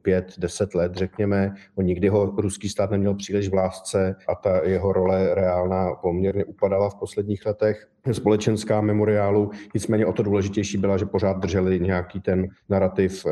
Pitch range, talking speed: 90-100 Hz, 160 wpm